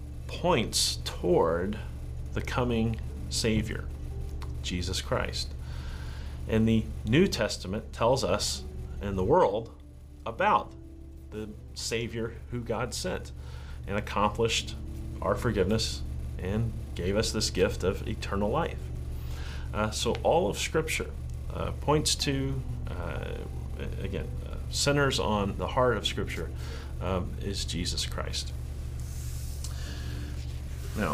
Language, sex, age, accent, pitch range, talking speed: English, male, 40-59, American, 65-95 Hz, 105 wpm